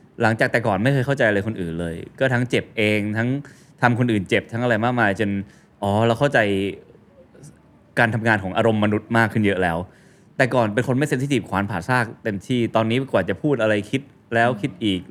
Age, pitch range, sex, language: 20-39, 95-125 Hz, male, Thai